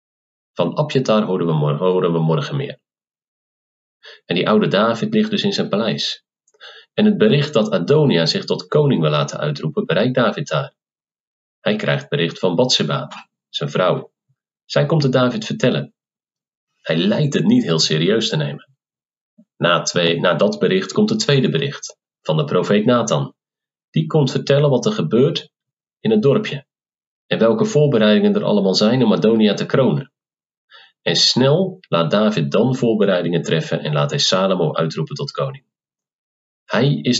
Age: 40-59